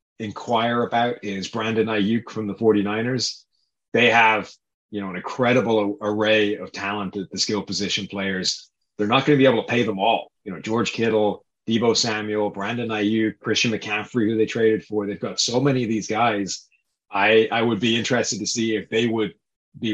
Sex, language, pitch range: male, English, 100-120 Hz